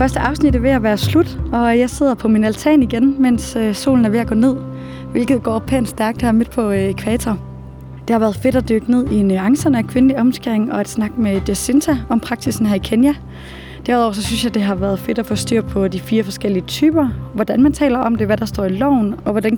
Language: Danish